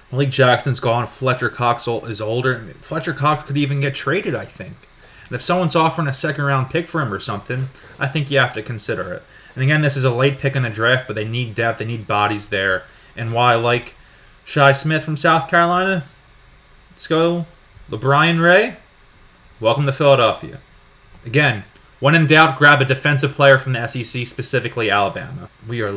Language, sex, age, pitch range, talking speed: English, male, 20-39, 115-145 Hz, 185 wpm